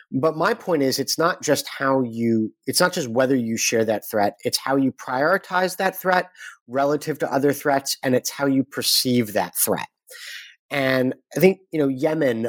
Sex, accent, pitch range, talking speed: male, American, 125-165 Hz, 190 wpm